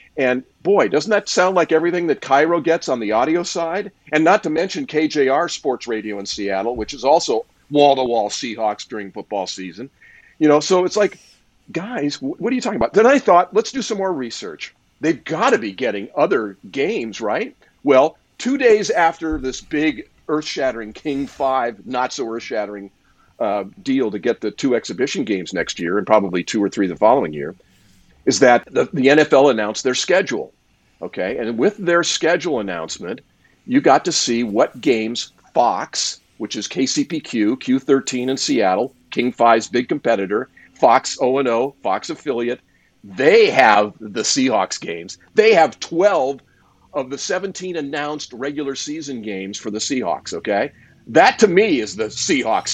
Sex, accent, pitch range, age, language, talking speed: male, American, 125-180 Hz, 50-69, English, 165 wpm